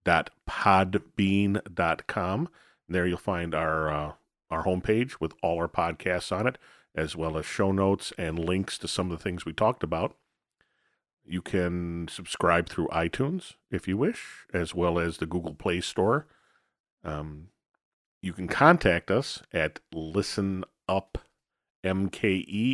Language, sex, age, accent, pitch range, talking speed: English, male, 40-59, American, 85-115 Hz, 140 wpm